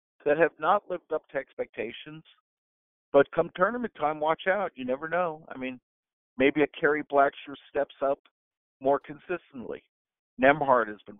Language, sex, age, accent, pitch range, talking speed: English, male, 50-69, American, 125-180 Hz, 155 wpm